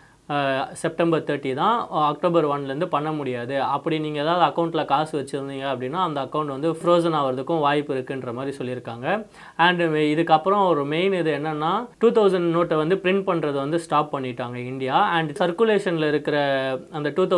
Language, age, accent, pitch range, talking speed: Tamil, 30-49, native, 140-175 Hz, 155 wpm